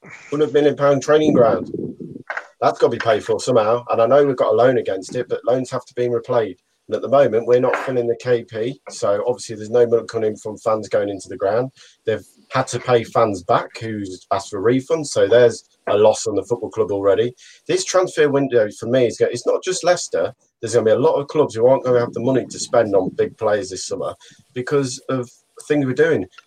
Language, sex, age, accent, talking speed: English, male, 40-59, British, 235 wpm